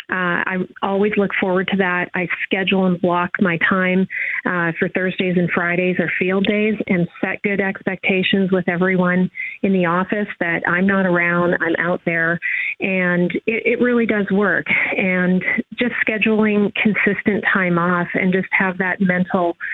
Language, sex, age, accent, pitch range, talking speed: English, female, 30-49, American, 175-200 Hz, 165 wpm